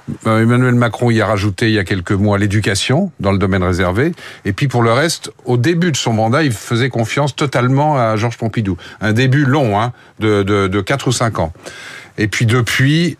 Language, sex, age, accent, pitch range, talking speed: French, male, 50-69, French, 115-140 Hz, 210 wpm